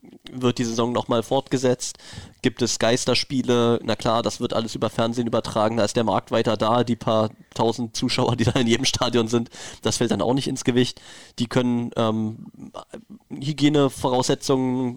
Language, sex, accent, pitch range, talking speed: German, male, German, 120-135 Hz, 170 wpm